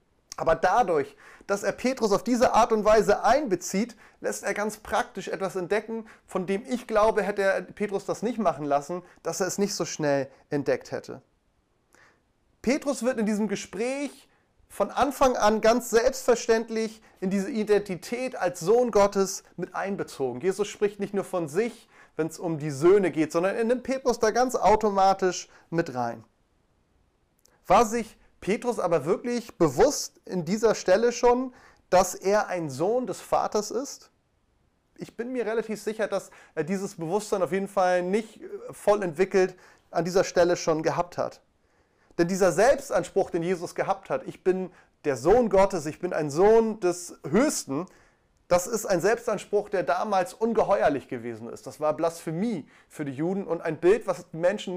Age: 30-49